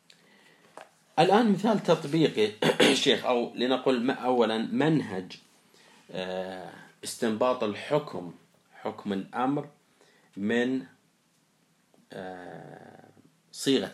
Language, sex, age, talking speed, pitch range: Arabic, male, 40-59, 60 wpm, 100-130 Hz